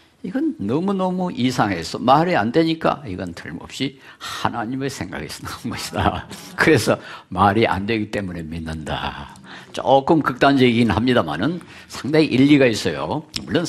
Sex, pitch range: male, 100-150 Hz